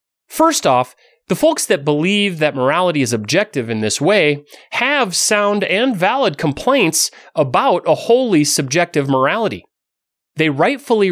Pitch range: 135-190 Hz